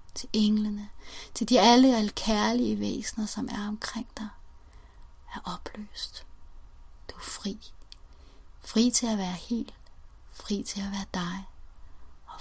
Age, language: 30-49, Danish